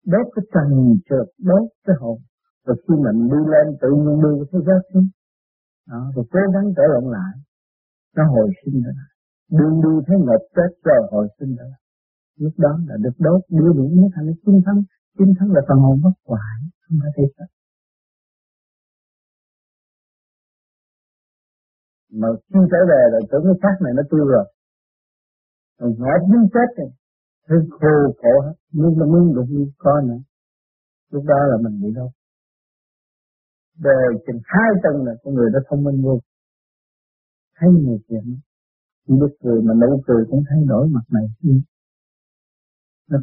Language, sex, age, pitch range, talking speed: Vietnamese, male, 50-69, 130-180 Hz, 155 wpm